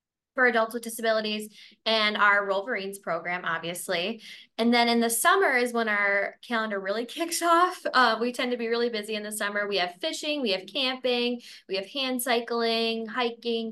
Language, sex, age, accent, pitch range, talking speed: English, female, 10-29, American, 195-235 Hz, 185 wpm